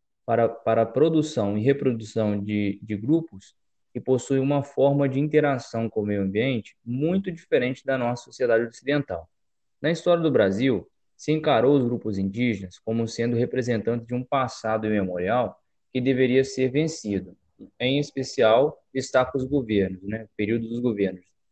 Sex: male